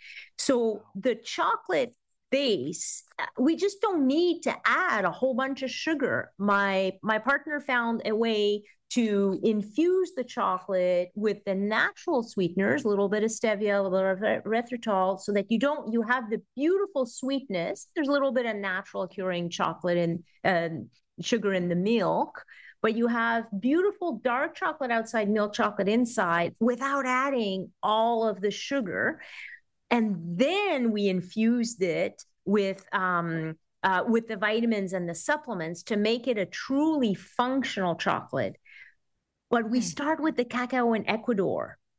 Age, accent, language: 40-59, American, English